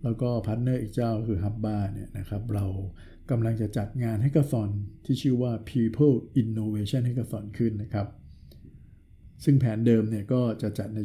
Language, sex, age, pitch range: Thai, male, 60-79, 105-130 Hz